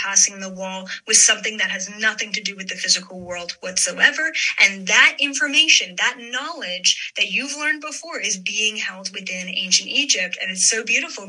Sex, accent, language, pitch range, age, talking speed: female, American, English, 195-260 Hz, 10-29, 180 wpm